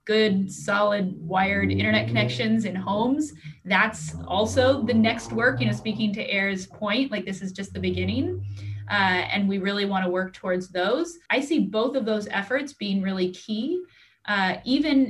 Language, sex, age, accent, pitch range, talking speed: English, female, 20-39, American, 185-220 Hz, 175 wpm